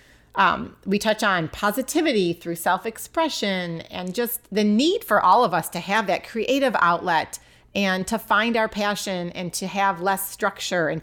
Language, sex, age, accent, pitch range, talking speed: English, female, 30-49, American, 175-225 Hz, 170 wpm